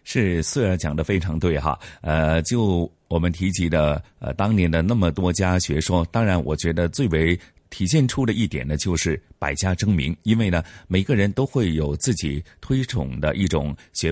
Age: 30-49